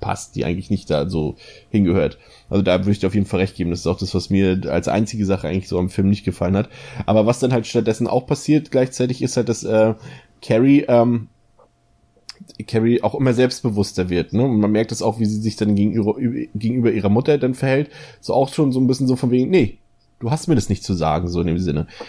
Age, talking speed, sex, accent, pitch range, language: 20-39, 245 wpm, male, German, 100-125 Hz, German